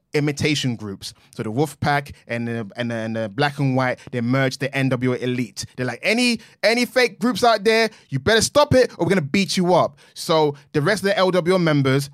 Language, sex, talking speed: English, male, 215 wpm